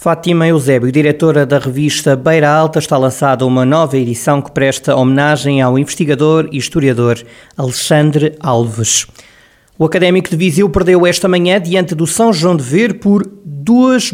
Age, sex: 20-39, male